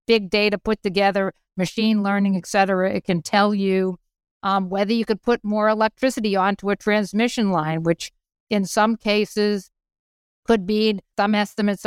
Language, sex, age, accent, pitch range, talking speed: English, female, 50-69, American, 190-225 Hz, 155 wpm